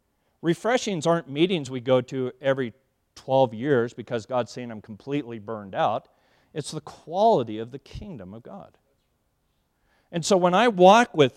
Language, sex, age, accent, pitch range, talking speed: English, male, 40-59, American, 140-200 Hz, 160 wpm